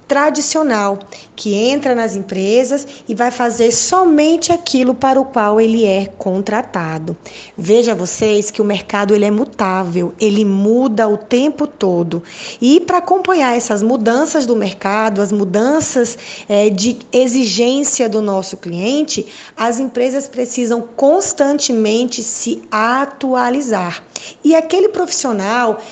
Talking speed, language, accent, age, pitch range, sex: 120 wpm, Portuguese, Brazilian, 20-39, 205-255 Hz, female